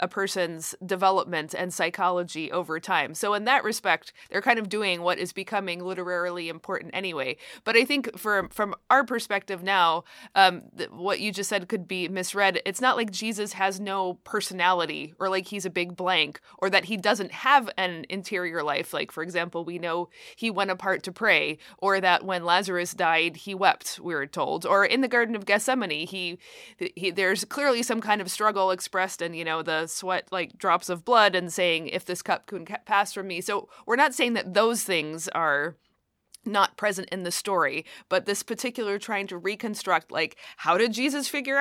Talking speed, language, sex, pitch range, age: 200 wpm, English, female, 175-210 Hz, 20-39